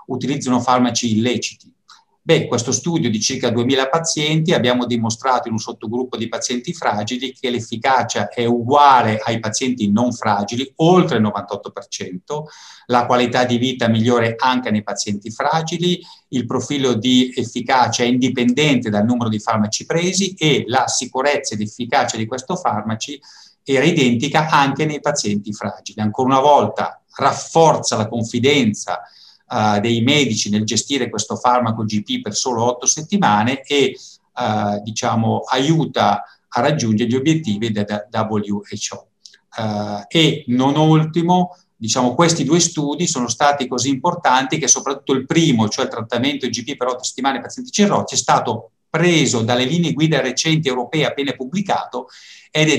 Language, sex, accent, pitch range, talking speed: Italian, male, native, 115-145 Hz, 150 wpm